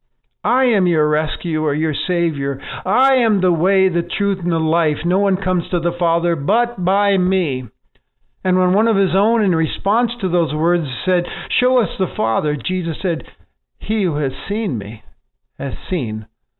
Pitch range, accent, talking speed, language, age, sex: 130-190 Hz, American, 175 wpm, English, 50-69, male